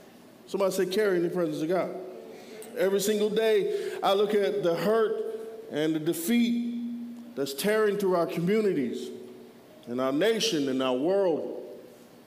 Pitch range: 190-240 Hz